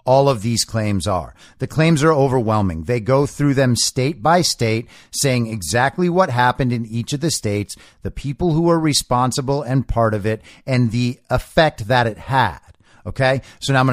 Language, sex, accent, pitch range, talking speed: English, male, American, 115-145 Hz, 190 wpm